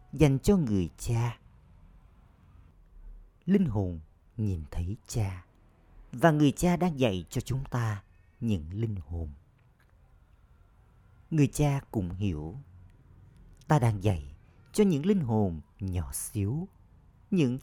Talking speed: 115 wpm